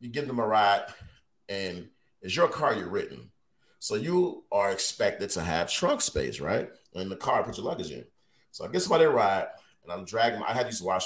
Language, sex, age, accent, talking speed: English, male, 30-49, American, 215 wpm